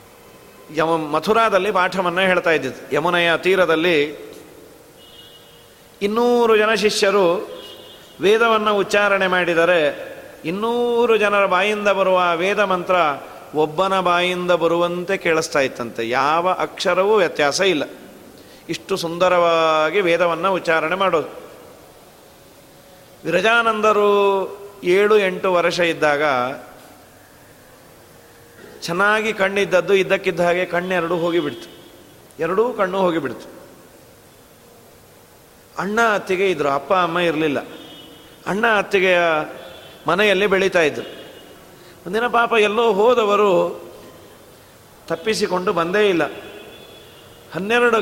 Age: 40-59